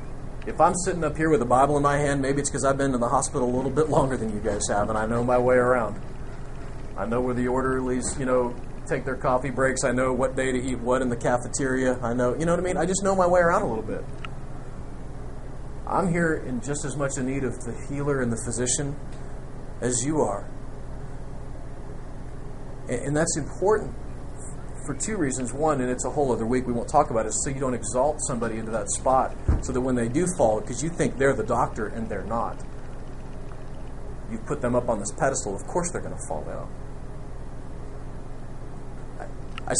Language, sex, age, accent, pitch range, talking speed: English, male, 30-49, American, 120-145 Hz, 215 wpm